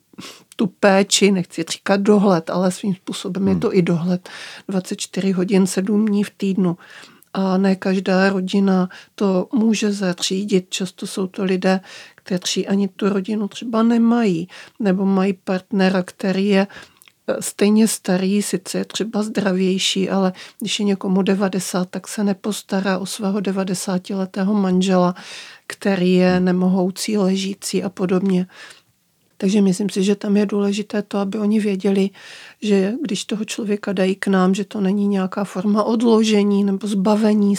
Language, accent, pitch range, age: Czech, native, 185-205 Hz, 50-69